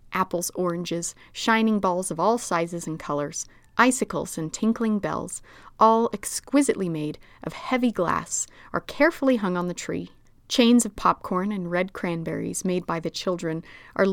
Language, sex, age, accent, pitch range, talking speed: English, female, 30-49, American, 170-235 Hz, 155 wpm